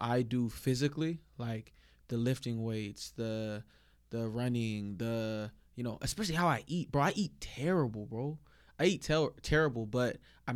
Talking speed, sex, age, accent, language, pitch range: 160 wpm, male, 20-39, American, English, 115-140 Hz